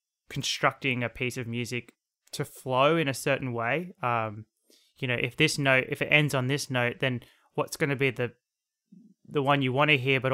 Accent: Australian